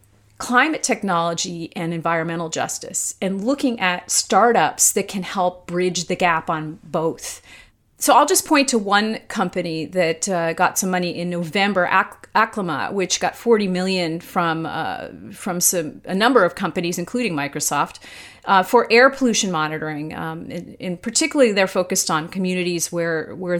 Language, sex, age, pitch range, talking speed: English, female, 40-59, 170-215 Hz, 160 wpm